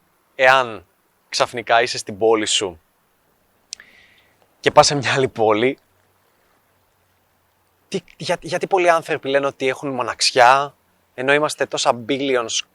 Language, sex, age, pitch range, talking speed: Greek, male, 20-39, 130-180 Hz, 110 wpm